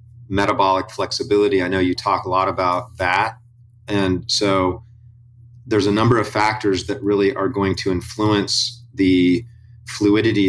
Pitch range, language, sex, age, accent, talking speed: 95-115 Hz, English, male, 40-59, American, 145 wpm